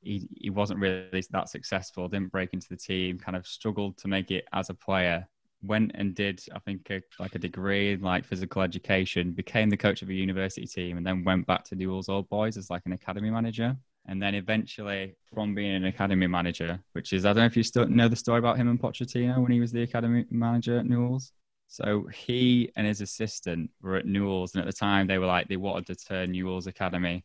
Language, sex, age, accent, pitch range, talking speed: English, male, 10-29, British, 90-105 Hz, 230 wpm